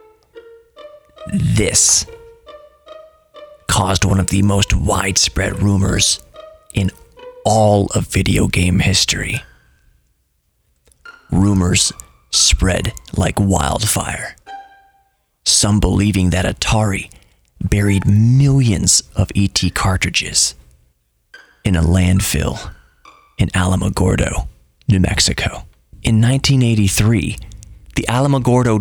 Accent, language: American, English